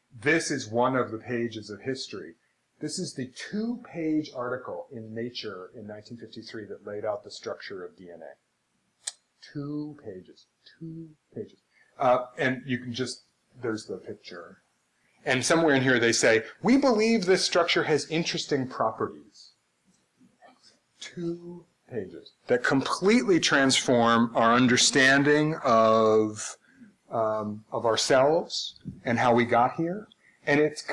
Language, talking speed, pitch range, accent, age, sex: English, 130 wpm, 115-150 Hz, American, 30-49, male